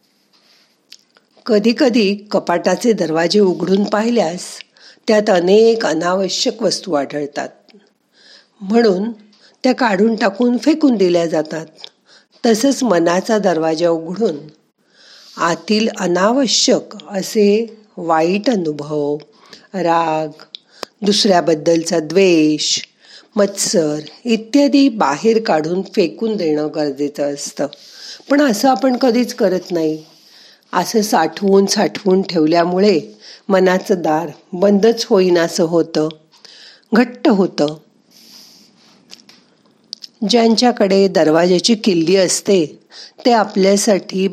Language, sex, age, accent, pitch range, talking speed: Marathi, female, 50-69, native, 170-230 Hz, 85 wpm